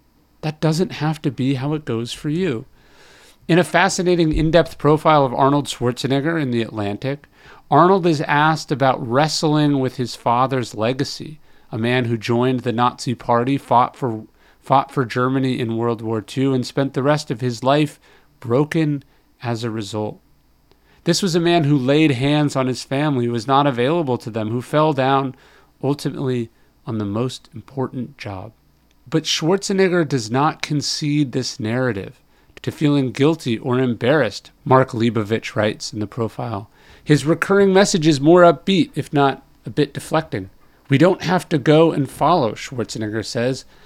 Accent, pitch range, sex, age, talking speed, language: American, 120-155 Hz, male, 40-59, 165 wpm, English